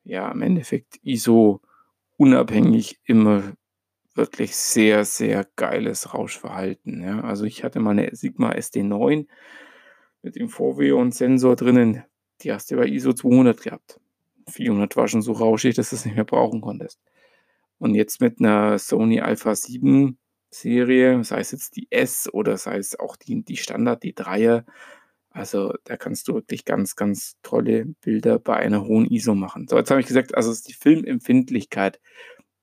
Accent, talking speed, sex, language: German, 165 wpm, male, German